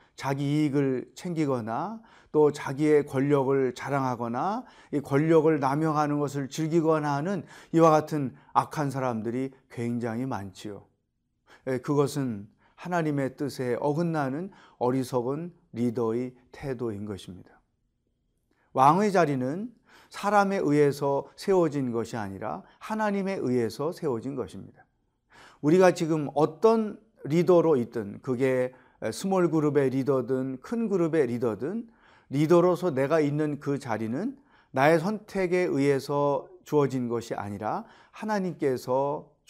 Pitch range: 125-175 Hz